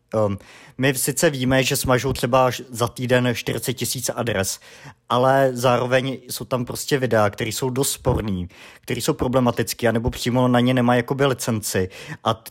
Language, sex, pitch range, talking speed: Czech, male, 120-135 Hz, 160 wpm